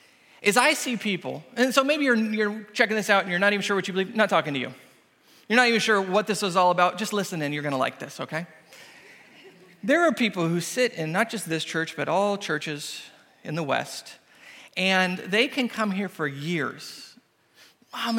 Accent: American